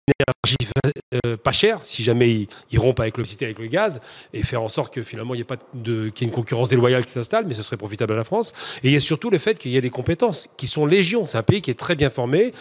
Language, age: French, 40-59